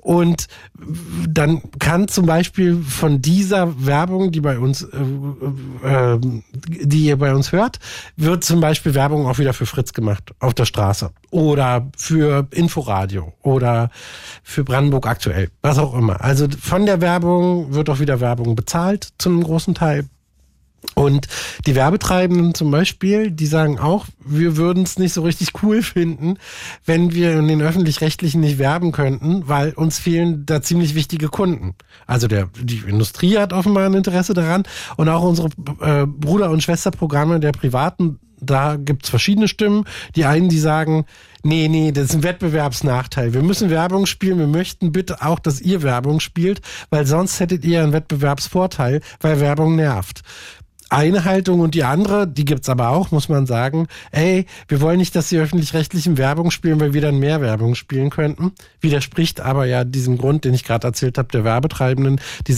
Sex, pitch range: male, 130-170 Hz